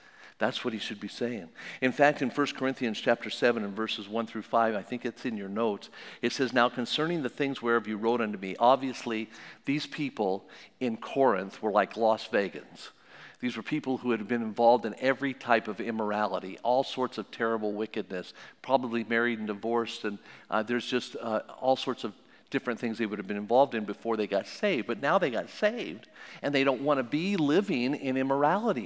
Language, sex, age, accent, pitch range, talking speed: English, male, 50-69, American, 115-150 Hz, 205 wpm